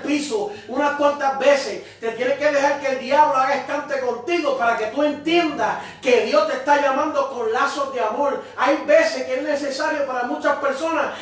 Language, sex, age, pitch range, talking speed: Spanish, male, 30-49, 255-300 Hz, 185 wpm